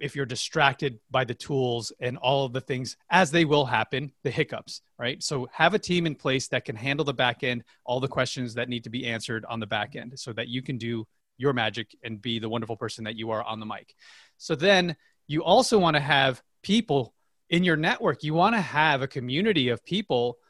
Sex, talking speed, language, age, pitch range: male, 230 wpm, English, 30-49, 125-160 Hz